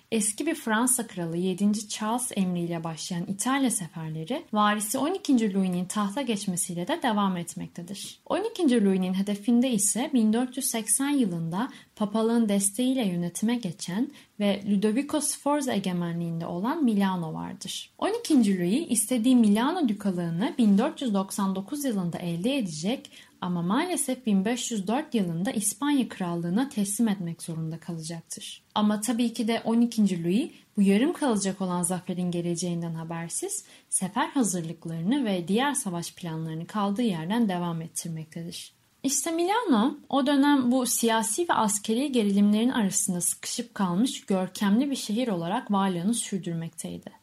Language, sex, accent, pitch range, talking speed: Turkish, female, native, 185-245 Hz, 120 wpm